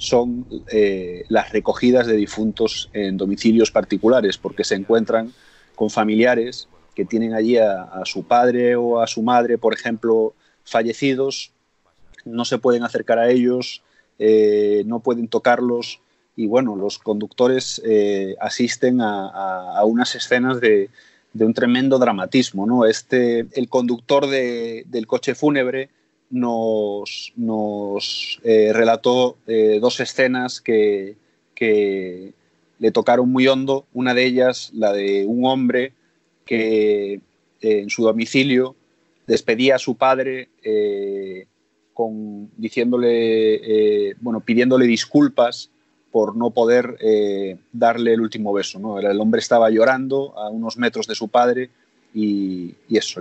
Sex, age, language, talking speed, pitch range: male, 30-49, Spanish, 135 wpm, 105-125 Hz